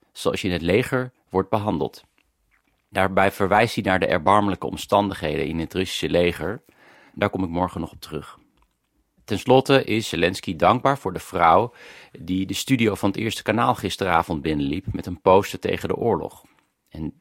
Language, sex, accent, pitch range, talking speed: Dutch, male, Dutch, 85-100 Hz, 170 wpm